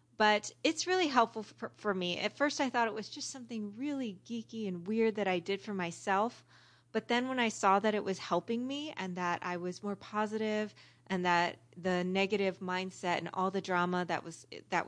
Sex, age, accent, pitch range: female, 20-39, American, 180-225 Hz